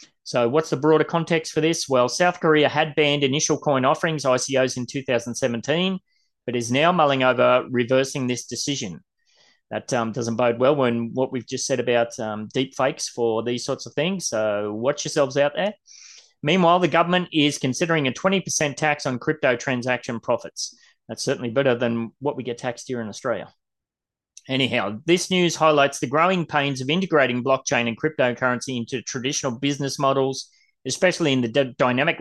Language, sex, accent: English, male, Australian